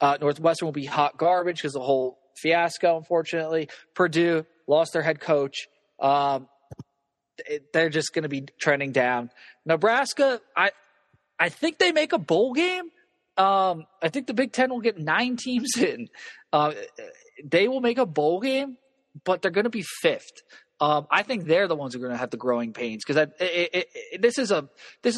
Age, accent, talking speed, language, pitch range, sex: 20-39, American, 175 wpm, English, 145-190 Hz, male